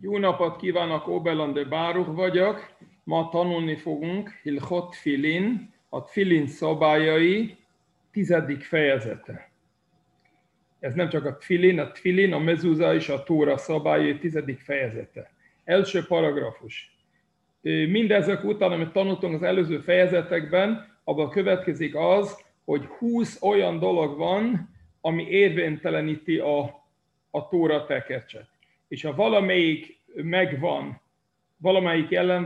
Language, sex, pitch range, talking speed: Hungarian, male, 155-190 Hz, 110 wpm